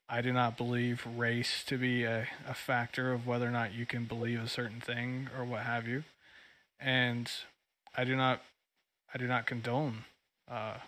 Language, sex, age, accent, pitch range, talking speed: English, male, 20-39, American, 115-125 Hz, 180 wpm